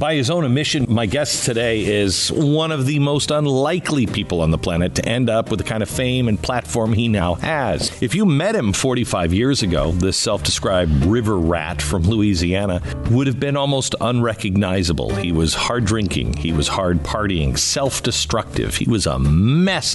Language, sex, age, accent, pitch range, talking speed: English, male, 50-69, American, 95-125 Hz, 185 wpm